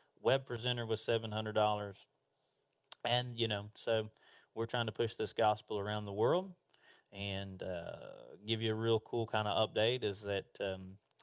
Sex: male